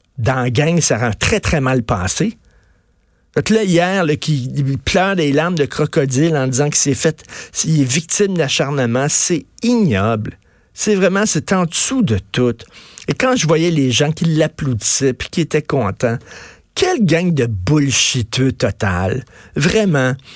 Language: French